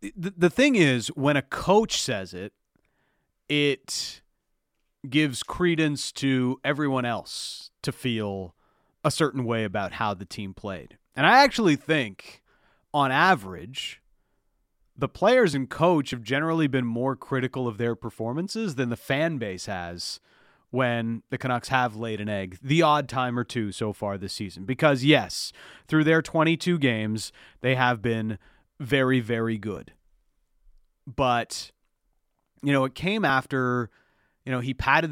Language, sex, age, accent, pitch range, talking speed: English, male, 30-49, American, 115-150 Hz, 145 wpm